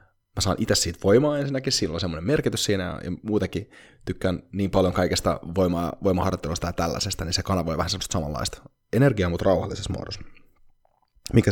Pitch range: 90-120 Hz